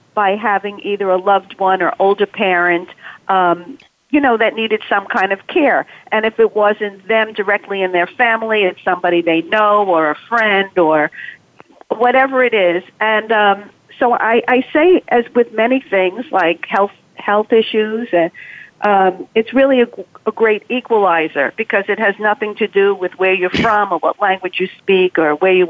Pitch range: 180-220 Hz